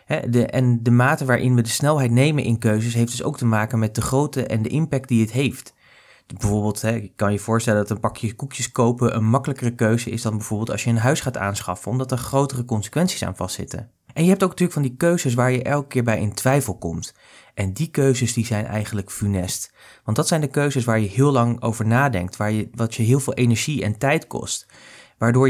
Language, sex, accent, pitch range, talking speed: Dutch, male, Dutch, 110-140 Hz, 225 wpm